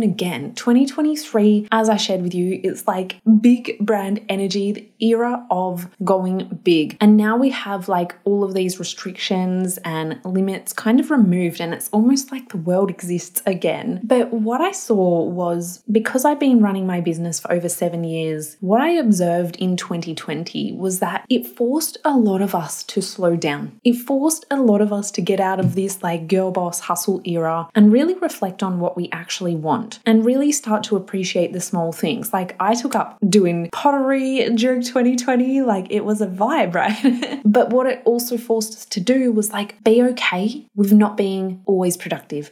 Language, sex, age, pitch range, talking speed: English, female, 20-39, 180-230 Hz, 190 wpm